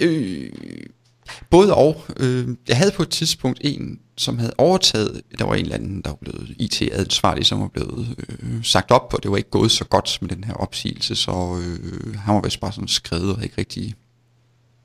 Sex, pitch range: male, 105-125 Hz